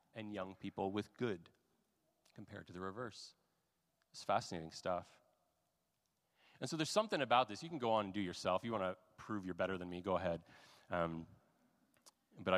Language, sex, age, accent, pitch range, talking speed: English, male, 30-49, American, 95-135 Hz, 185 wpm